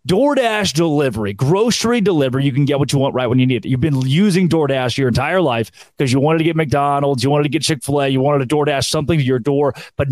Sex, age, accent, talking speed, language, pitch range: male, 30-49, American, 250 wpm, English, 130-175 Hz